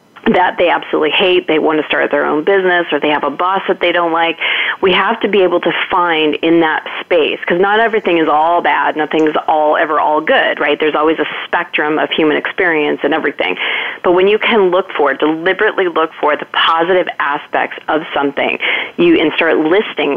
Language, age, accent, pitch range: English, 30-49, American, 150-180 Hz